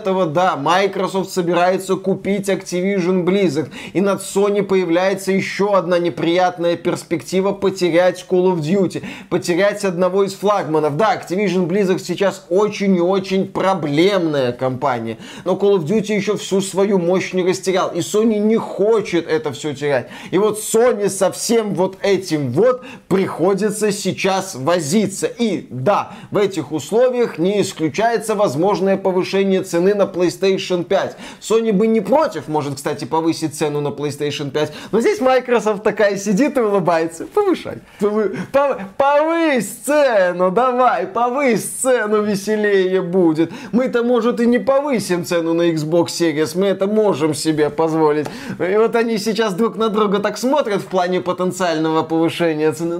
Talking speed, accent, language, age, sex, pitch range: 145 wpm, native, Russian, 20-39, male, 175-215 Hz